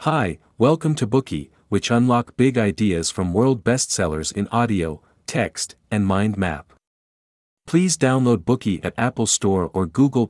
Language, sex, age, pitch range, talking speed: Spanish, male, 50-69, 90-125 Hz, 145 wpm